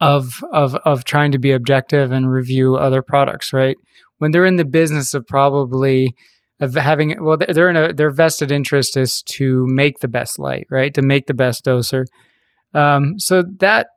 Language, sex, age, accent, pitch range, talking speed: English, male, 20-39, American, 130-160 Hz, 185 wpm